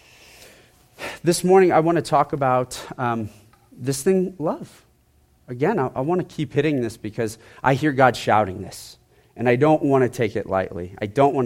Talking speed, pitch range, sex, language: 190 wpm, 110-140 Hz, male, English